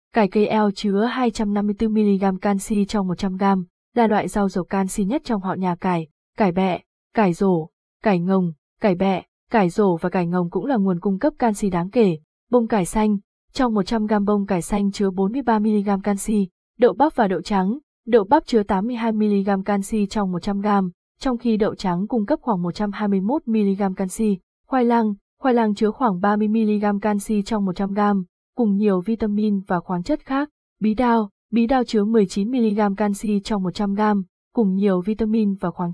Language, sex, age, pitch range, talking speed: Vietnamese, female, 20-39, 195-230 Hz, 170 wpm